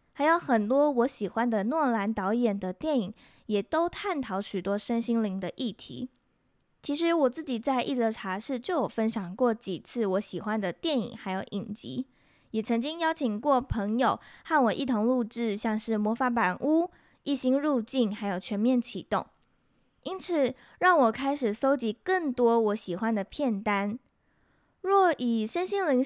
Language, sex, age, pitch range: Chinese, female, 10-29, 210-275 Hz